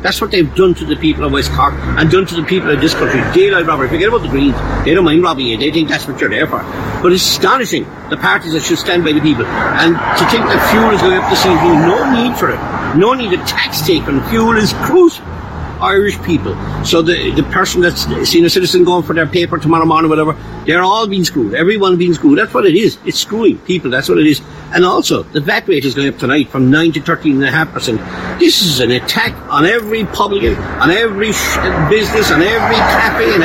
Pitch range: 155-210 Hz